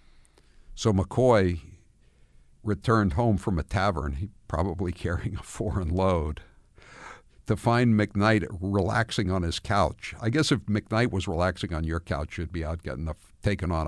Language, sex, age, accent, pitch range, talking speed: English, male, 60-79, American, 85-120 Hz, 155 wpm